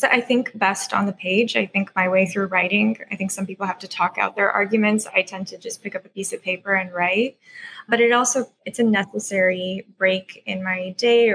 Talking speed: 235 wpm